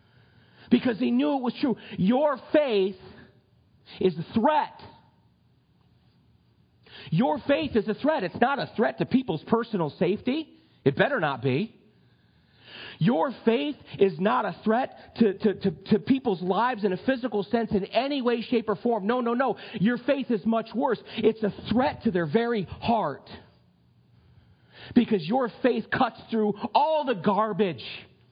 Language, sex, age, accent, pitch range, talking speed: English, male, 40-59, American, 200-245 Hz, 155 wpm